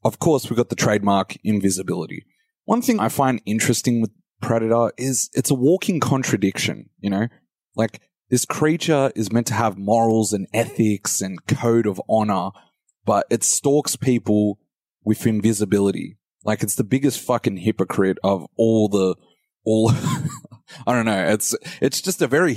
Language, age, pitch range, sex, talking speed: English, 20-39, 100-130 Hz, male, 155 wpm